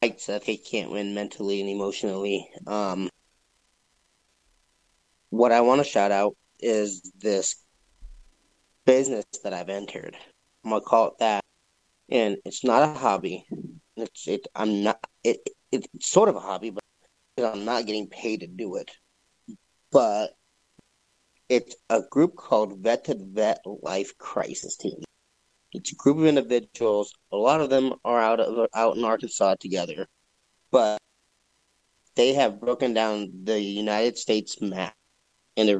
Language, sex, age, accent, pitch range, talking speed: English, male, 30-49, American, 100-110 Hz, 145 wpm